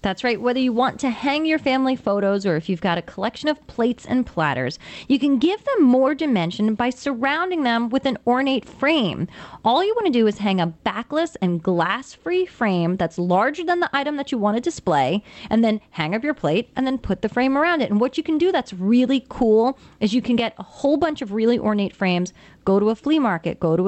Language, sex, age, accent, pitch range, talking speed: English, female, 30-49, American, 200-280 Hz, 235 wpm